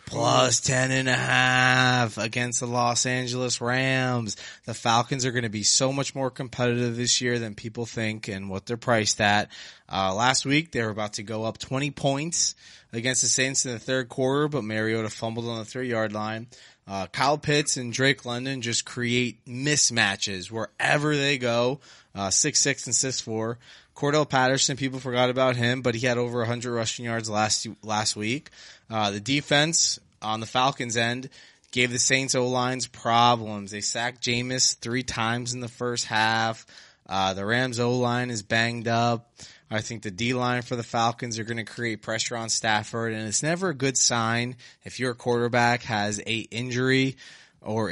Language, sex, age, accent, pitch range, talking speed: English, male, 20-39, American, 110-130 Hz, 180 wpm